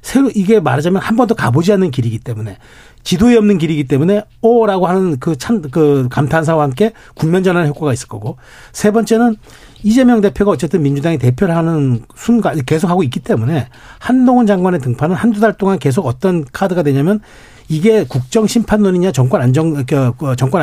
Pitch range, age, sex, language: 140-205 Hz, 40-59, male, Korean